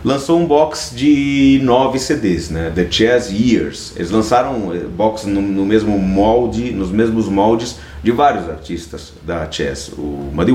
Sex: male